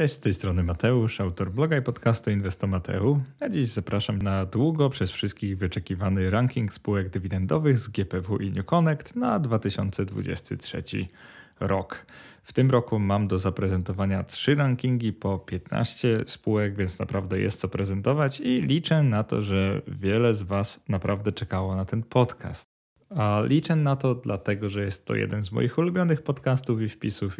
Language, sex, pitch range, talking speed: Polish, male, 95-125 Hz, 160 wpm